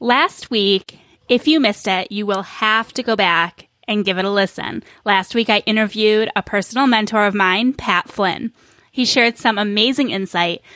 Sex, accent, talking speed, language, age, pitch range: female, American, 185 wpm, English, 10-29, 200-255 Hz